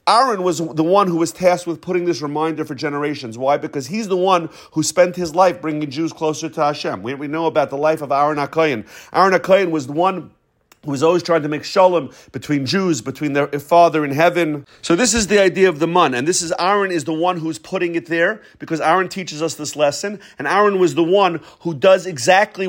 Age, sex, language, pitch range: 40-59, male, English, 150-180 Hz